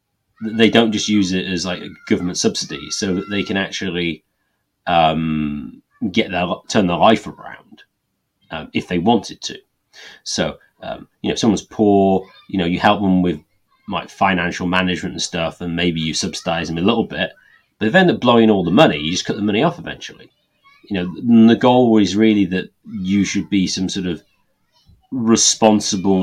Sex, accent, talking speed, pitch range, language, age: male, British, 185 wpm, 85-105 Hz, English, 30-49